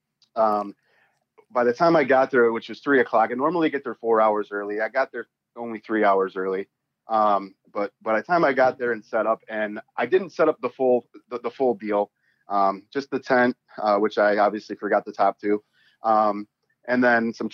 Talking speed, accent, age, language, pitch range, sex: 215 wpm, American, 30-49, English, 105-125 Hz, male